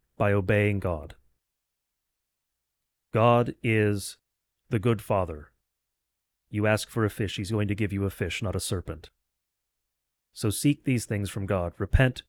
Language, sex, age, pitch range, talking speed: English, male, 30-49, 100-120 Hz, 145 wpm